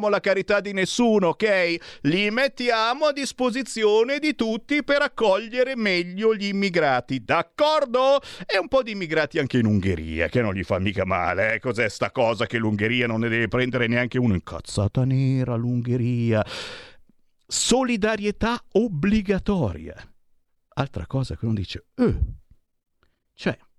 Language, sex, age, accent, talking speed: Italian, male, 50-69, native, 140 wpm